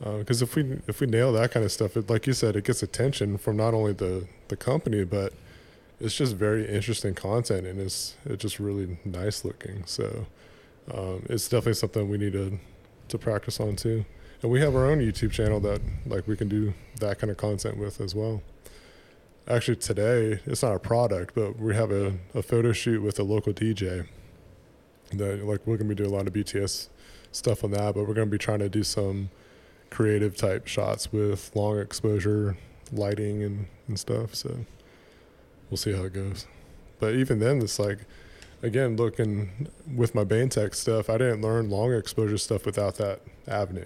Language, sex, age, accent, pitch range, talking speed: English, male, 20-39, American, 100-115 Hz, 195 wpm